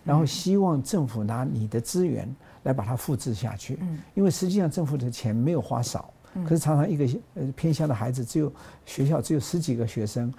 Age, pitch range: 50-69, 125-175 Hz